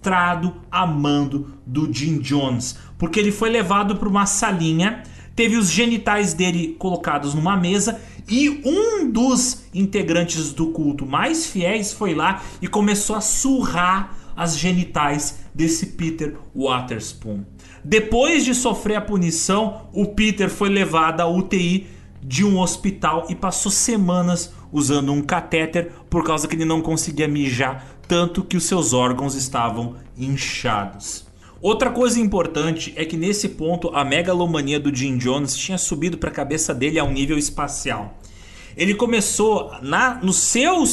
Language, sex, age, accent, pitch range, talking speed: Portuguese, male, 30-49, Brazilian, 135-200 Hz, 145 wpm